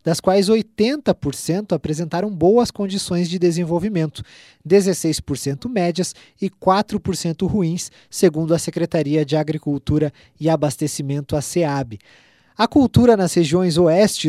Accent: Brazilian